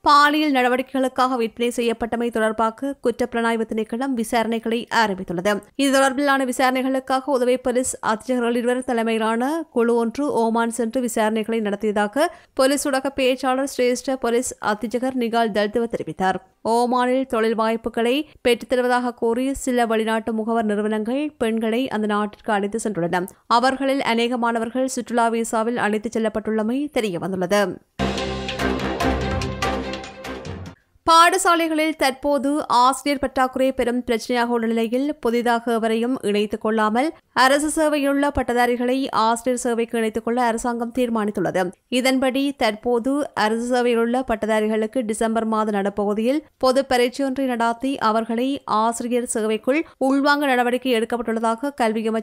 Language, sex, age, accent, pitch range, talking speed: English, female, 20-39, Indian, 220-260 Hz, 100 wpm